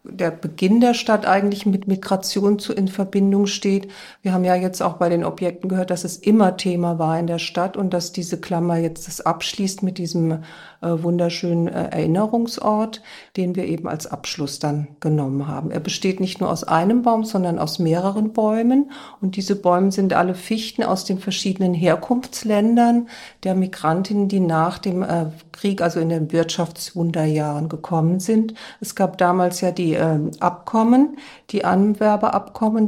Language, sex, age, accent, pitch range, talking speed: German, female, 50-69, German, 170-205 Hz, 165 wpm